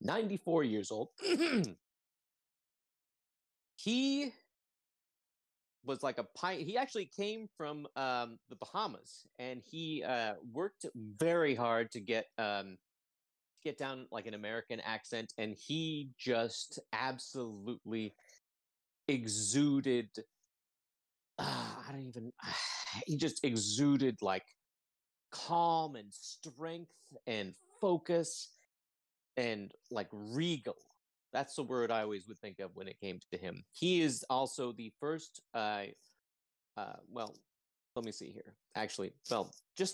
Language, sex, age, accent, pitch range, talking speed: English, male, 30-49, American, 110-165 Hz, 120 wpm